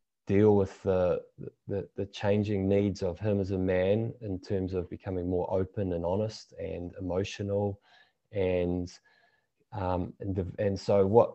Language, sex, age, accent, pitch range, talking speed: English, male, 20-39, Australian, 95-110 Hz, 155 wpm